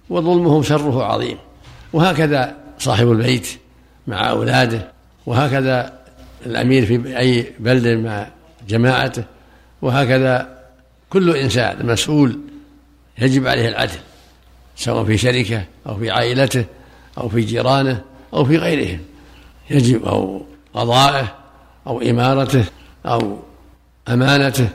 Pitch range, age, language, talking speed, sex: 115-140 Hz, 60-79, Arabic, 100 wpm, male